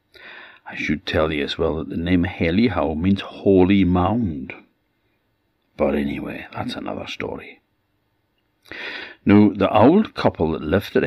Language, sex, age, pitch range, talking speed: English, male, 60-79, 85-100 Hz, 135 wpm